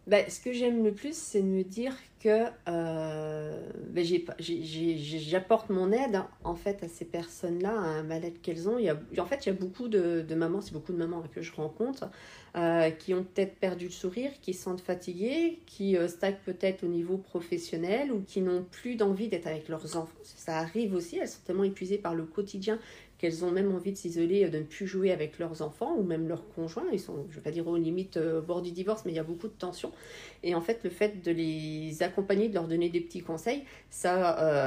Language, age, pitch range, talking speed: French, 40-59, 170-200 Hz, 240 wpm